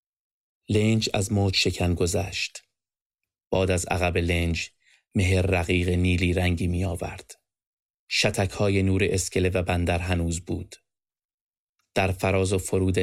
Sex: male